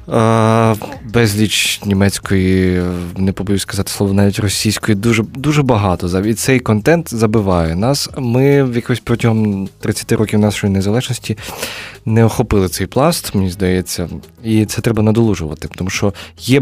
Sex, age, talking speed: male, 20-39, 135 wpm